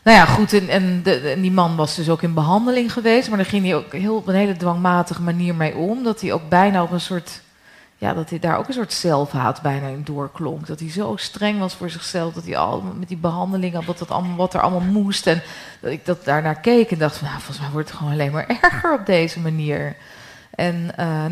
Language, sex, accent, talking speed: Dutch, female, Dutch, 250 wpm